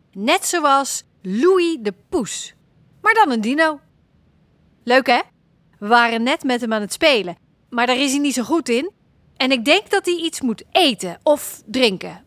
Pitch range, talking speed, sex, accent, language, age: 205-335 Hz, 180 wpm, female, Dutch, Dutch, 40-59